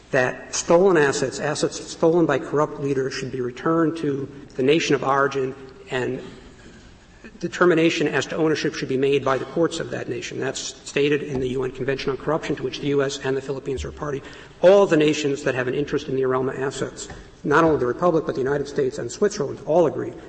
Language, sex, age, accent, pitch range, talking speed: English, male, 60-79, American, 135-165 Hz, 210 wpm